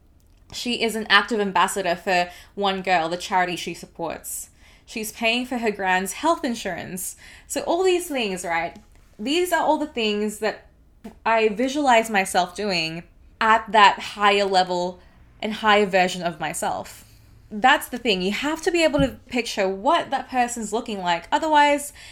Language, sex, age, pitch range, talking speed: English, female, 20-39, 190-245 Hz, 160 wpm